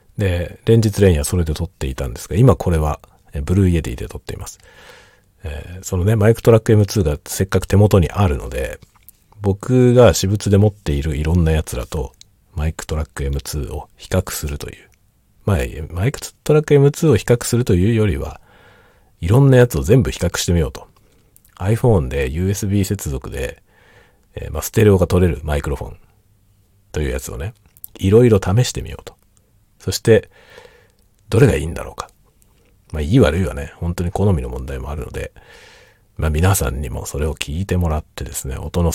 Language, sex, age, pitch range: Japanese, male, 40-59, 80-100 Hz